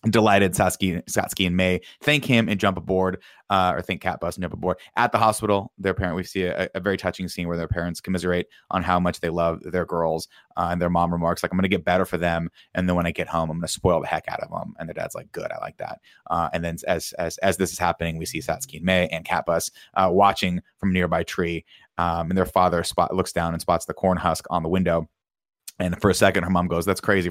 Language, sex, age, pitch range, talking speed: English, male, 20-39, 85-95 Hz, 265 wpm